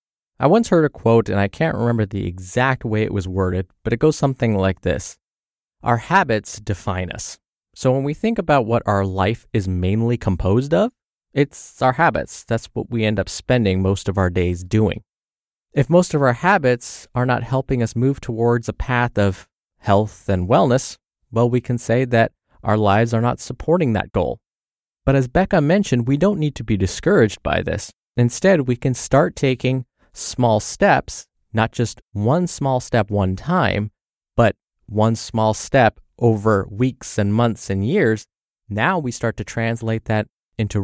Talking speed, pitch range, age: 180 wpm, 105-135 Hz, 20-39